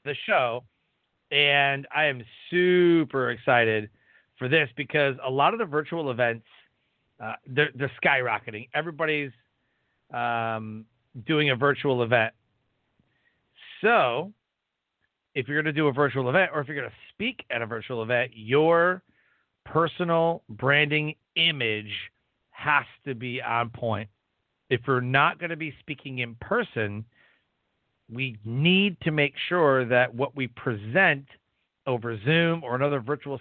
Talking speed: 140 wpm